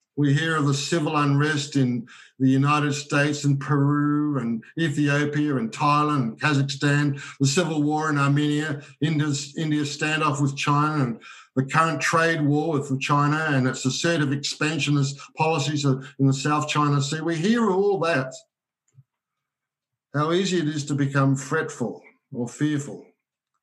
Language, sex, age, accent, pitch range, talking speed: English, male, 60-79, Australian, 135-155 Hz, 150 wpm